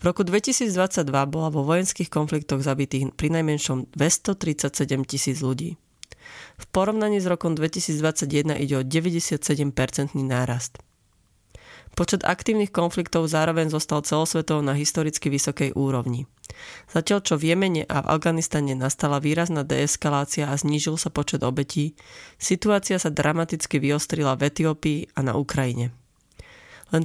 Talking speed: 125 wpm